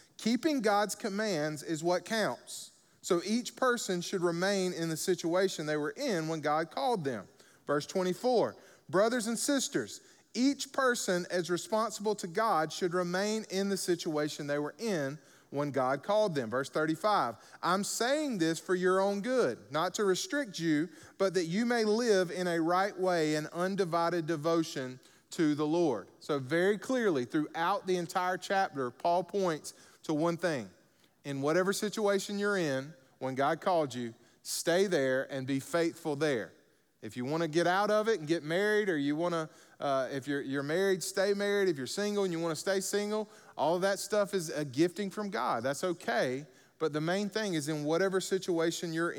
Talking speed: 180 wpm